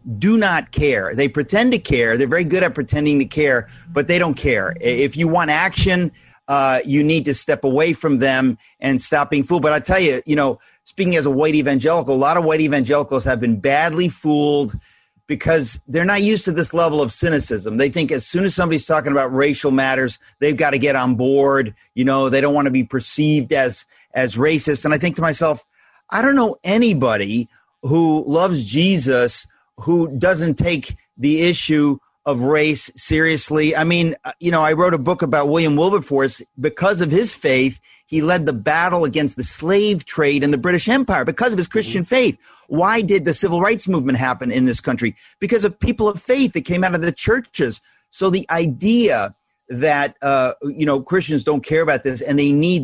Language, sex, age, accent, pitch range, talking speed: English, male, 40-59, American, 135-175 Hz, 200 wpm